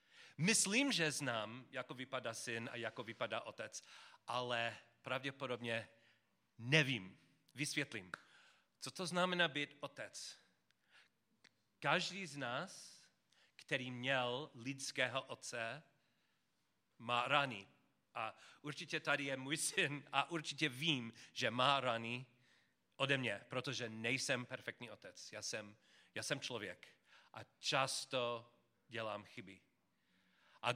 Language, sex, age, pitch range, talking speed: Czech, male, 40-59, 125-160 Hz, 110 wpm